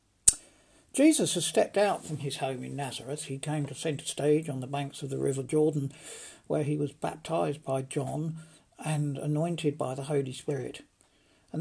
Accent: British